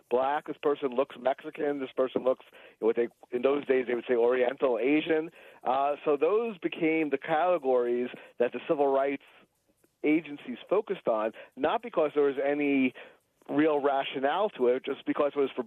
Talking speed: 170 wpm